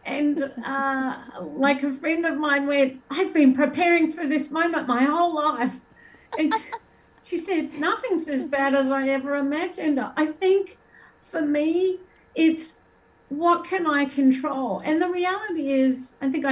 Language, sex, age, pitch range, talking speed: English, female, 60-79, 265-315 Hz, 155 wpm